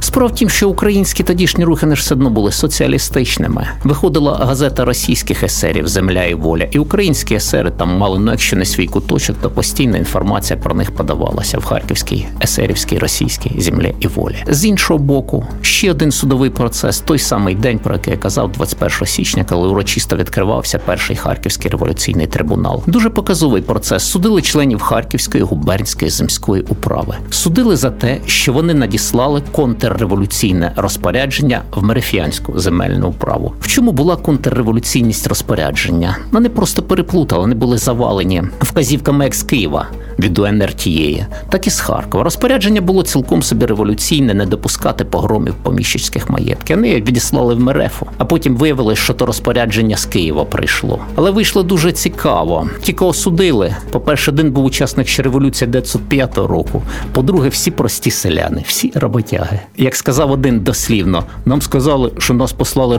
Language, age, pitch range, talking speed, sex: Ukrainian, 50-69, 105-145 Hz, 155 wpm, male